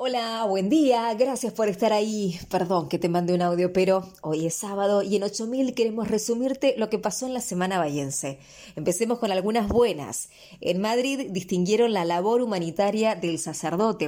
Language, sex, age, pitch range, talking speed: English, female, 20-39, 175-225 Hz, 175 wpm